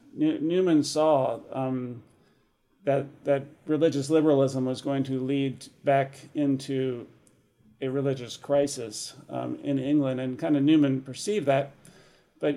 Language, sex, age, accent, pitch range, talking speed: English, male, 40-59, American, 130-155 Hz, 125 wpm